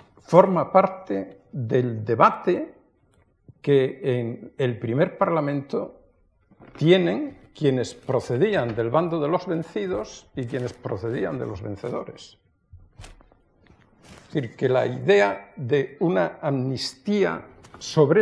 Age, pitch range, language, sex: 60-79, 120-165 Hz, Spanish, male